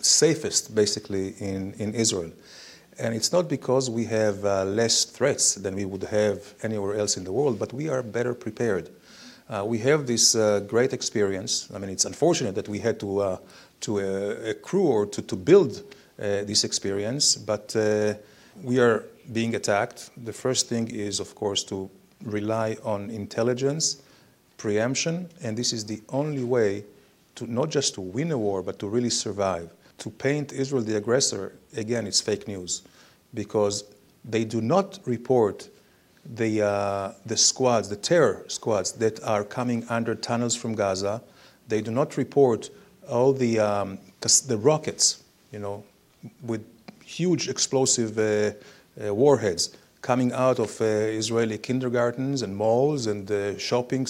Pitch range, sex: 105-125 Hz, male